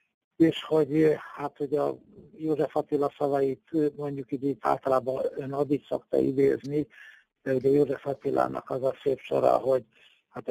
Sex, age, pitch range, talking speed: male, 50-69, 130-150 Hz, 130 wpm